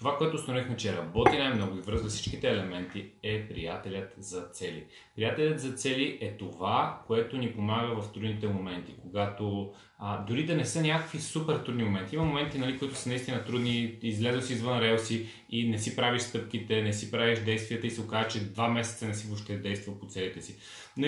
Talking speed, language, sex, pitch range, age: 195 wpm, Bulgarian, male, 105-125 Hz, 30-49